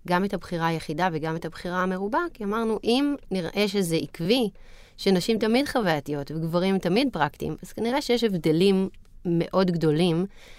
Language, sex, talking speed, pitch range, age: Hebrew, female, 145 wpm, 165-225 Hz, 30-49